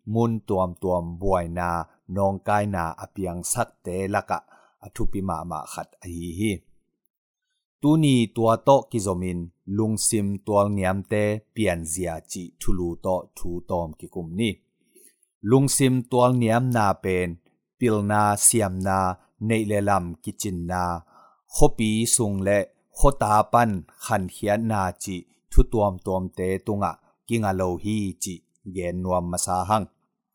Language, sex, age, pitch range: English, male, 30-49, 90-120 Hz